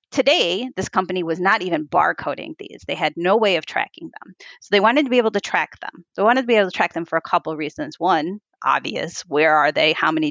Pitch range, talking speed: 175-255 Hz, 255 wpm